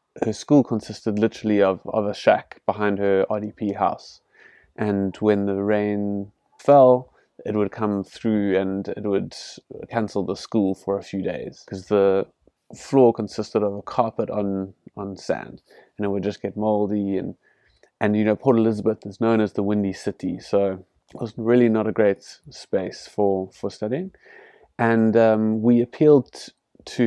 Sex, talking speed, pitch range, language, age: male, 165 wpm, 100-110 Hz, English, 20-39